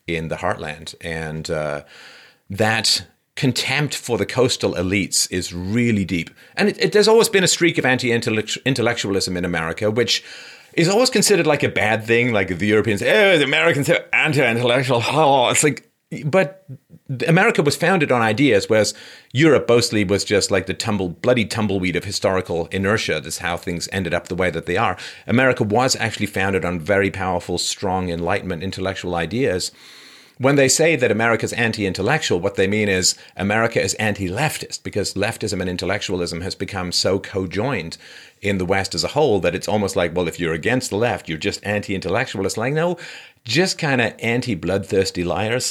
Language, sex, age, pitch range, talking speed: English, male, 40-59, 90-125 Hz, 175 wpm